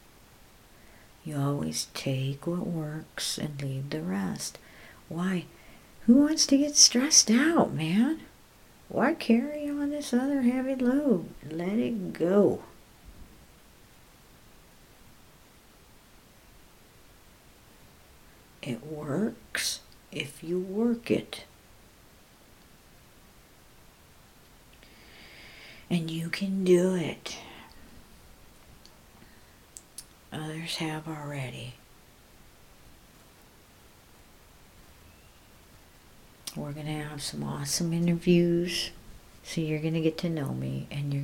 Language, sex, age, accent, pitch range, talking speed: English, female, 60-79, American, 145-205 Hz, 85 wpm